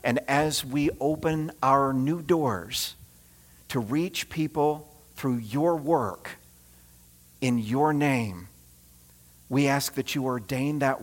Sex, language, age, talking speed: male, English, 50-69, 120 wpm